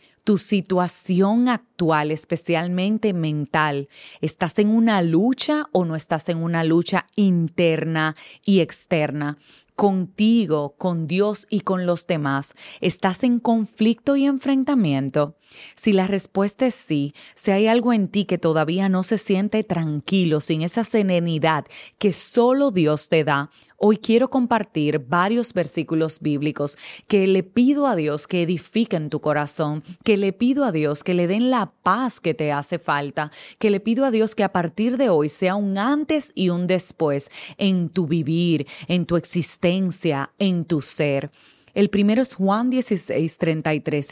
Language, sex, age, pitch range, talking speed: Spanish, female, 30-49, 155-210 Hz, 155 wpm